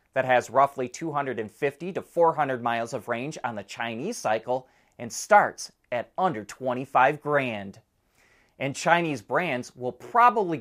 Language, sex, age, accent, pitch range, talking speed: English, male, 30-49, American, 125-185 Hz, 135 wpm